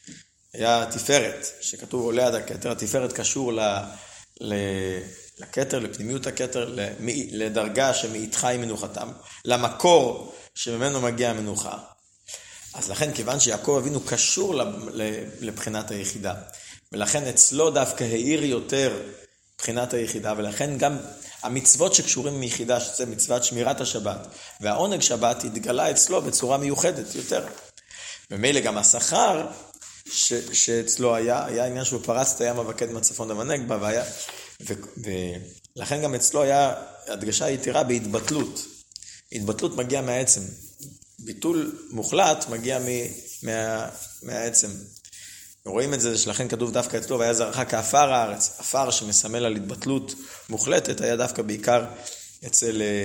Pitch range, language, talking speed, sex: 105-130 Hz, Hebrew, 115 wpm, male